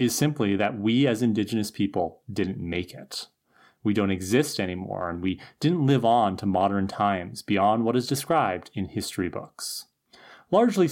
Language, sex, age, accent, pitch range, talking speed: English, male, 30-49, American, 100-135 Hz, 165 wpm